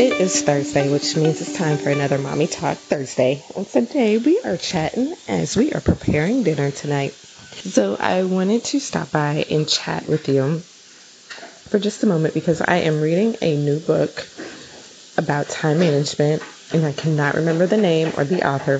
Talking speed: 180 wpm